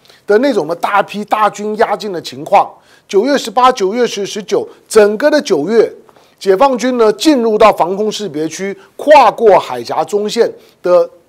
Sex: male